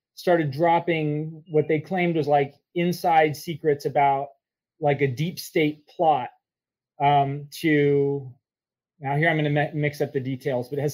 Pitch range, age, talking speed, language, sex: 145-170 Hz, 30-49, 160 wpm, English, male